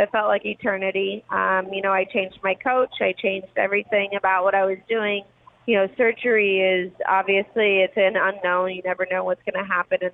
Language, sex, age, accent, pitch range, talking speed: English, female, 20-39, American, 185-205 Hz, 205 wpm